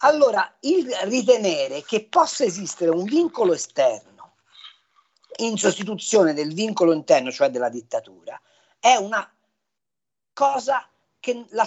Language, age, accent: Italian, 40-59, native